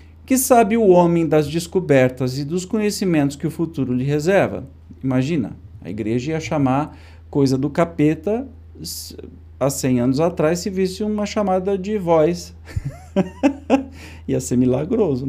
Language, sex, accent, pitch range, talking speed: Portuguese, male, Brazilian, 130-180 Hz, 135 wpm